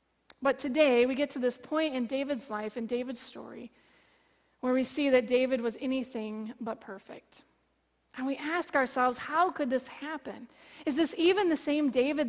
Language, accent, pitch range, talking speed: English, American, 230-280 Hz, 175 wpm